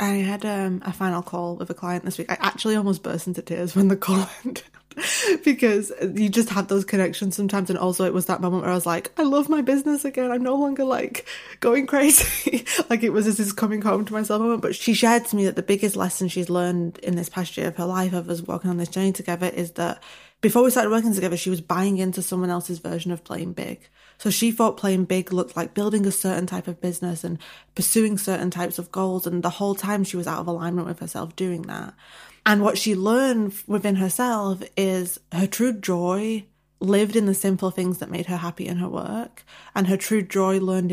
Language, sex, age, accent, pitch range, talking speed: English, female, 20-39, British, 180-215 Hz, 235 wpm